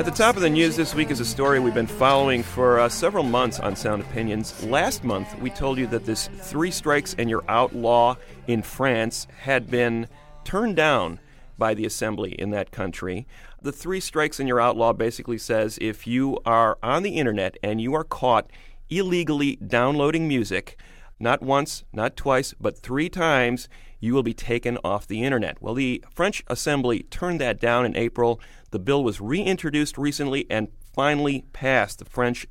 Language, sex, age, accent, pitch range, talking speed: English, male, 40-59, American, 110-140 Hz, 185 wpm